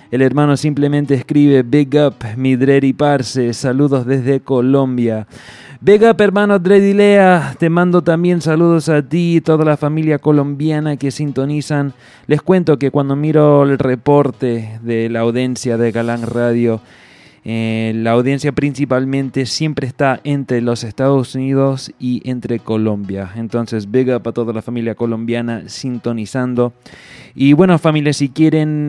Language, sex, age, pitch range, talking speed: English, male, 20-39, 120-145 Hz, 145 wpm